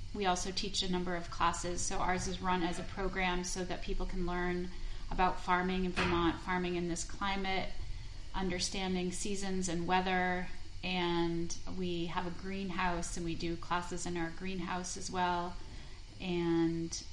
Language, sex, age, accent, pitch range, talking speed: English, female, 30-49, American, 165-185 Hz, 160 wpm